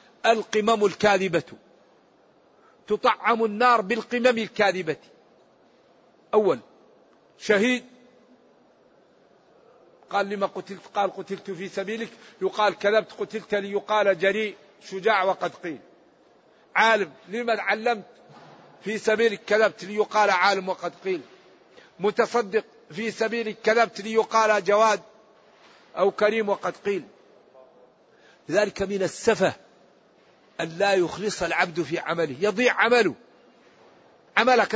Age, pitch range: 50-69, 200-235 Hz